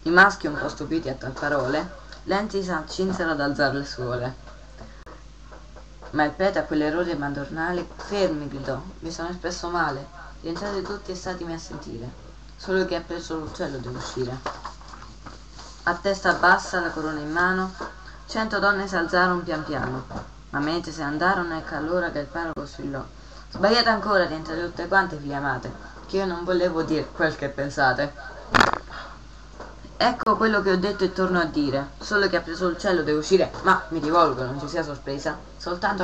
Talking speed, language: 175 wpm, Italian